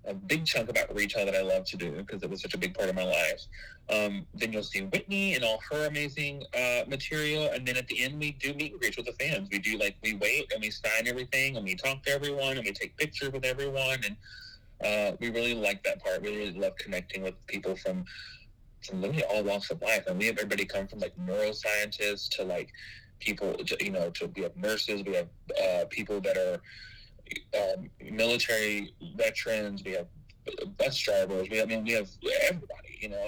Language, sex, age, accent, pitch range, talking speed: English, male, 30-49, American, 100-135 Hz, 220 wpm